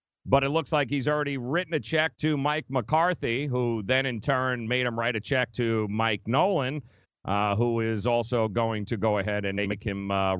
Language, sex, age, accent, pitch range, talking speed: English, male, 40-59, American, 105-140 Hz, 210 wpm